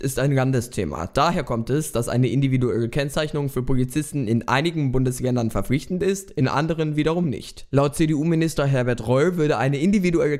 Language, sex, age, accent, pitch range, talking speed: German, male, 20-39, German, 125-160 Hz, 160 wpm